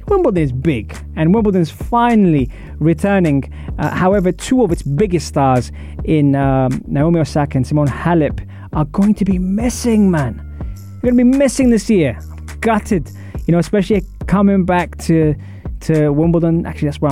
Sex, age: male, 20-39